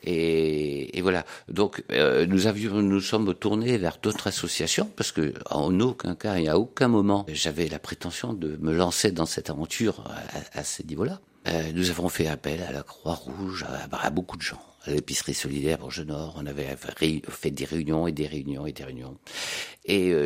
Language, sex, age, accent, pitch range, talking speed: French, male, 60-79, French, 80-95 Hz, 195 wpm